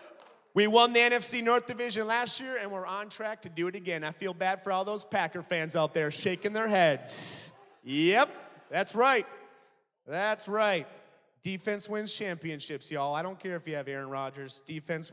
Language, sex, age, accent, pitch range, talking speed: English, male, 30-49, American, 155-190 Hz, 185 wpm